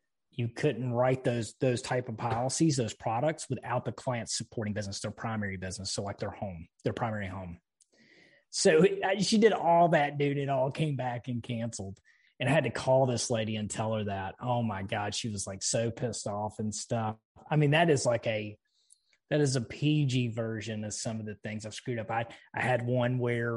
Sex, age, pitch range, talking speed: male, 30-49, 110-140 Hz, 210 wpm